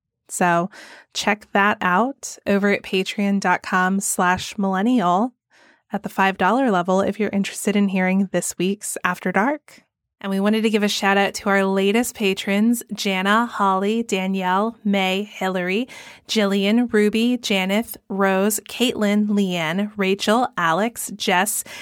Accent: American